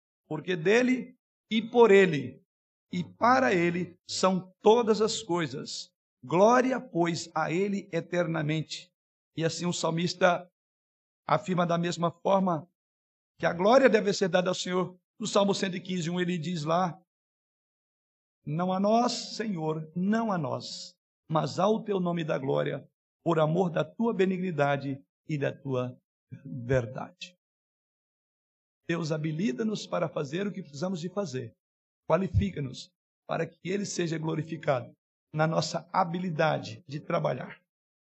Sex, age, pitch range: male, 60-79, 160-195 Hz